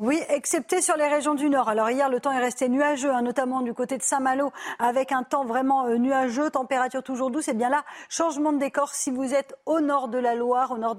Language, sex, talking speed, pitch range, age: French, female, 235 wpm, 240-280 Hz, 40-59